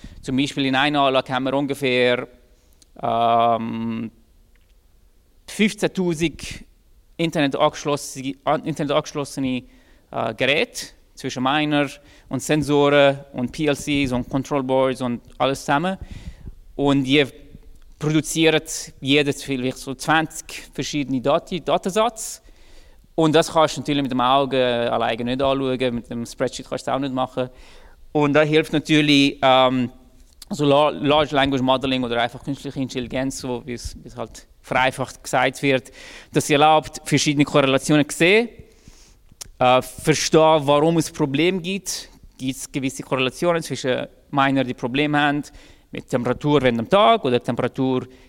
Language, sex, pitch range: English, male, 125-150 Hz